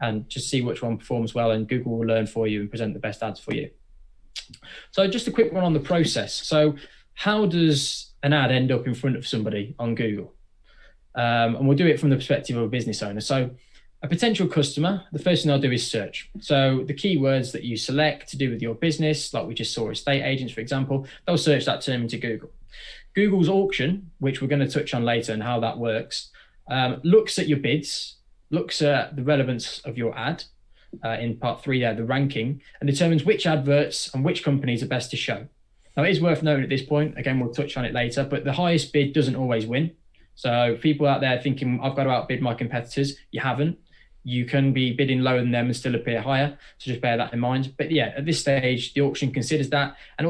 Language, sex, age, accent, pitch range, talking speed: English, male, 20-39, British, 120-150 Hz, 230 wpm